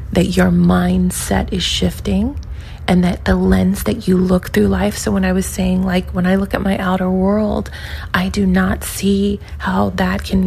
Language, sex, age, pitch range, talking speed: English, female, 30-49, 180-200 Hz, 195 wpm